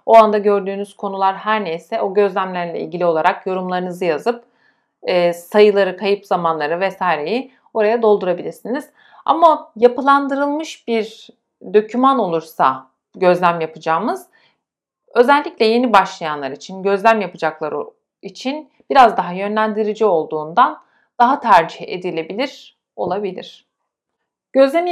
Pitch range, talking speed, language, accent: 175-225 Hz, 100 wpm, Turkish, native